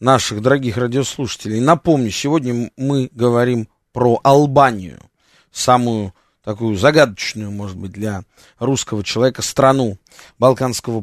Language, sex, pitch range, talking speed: Russian, male, 120-160 Hz, 105 wpm